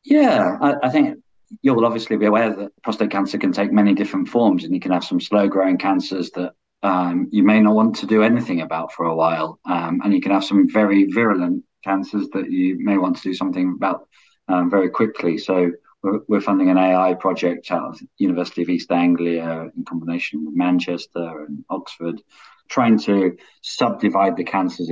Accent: British